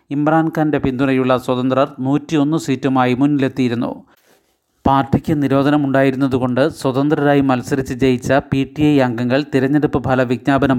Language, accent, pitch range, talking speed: Malayalam, native, 130-140 Hz, 100 wpm